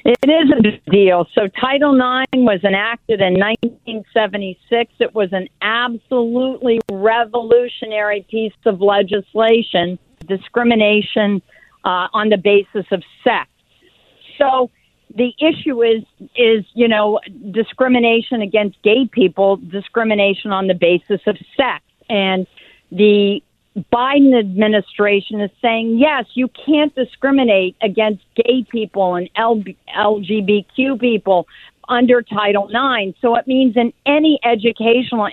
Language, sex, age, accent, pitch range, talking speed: English, female, 50-69, American, 205-250 Hz, 120 wpm